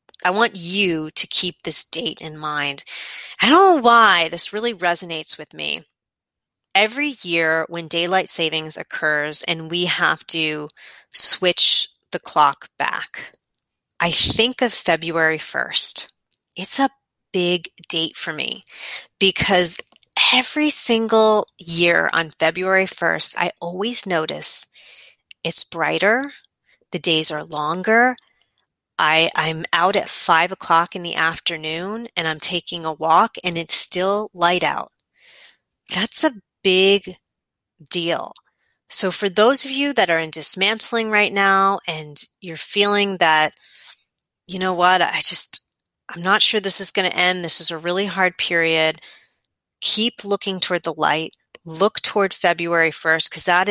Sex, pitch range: female, 165-205 Hz